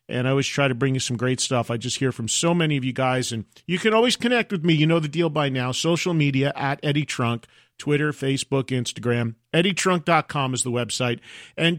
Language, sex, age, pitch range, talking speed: English, male, 40-59, 130-180 Hz, 230 wpm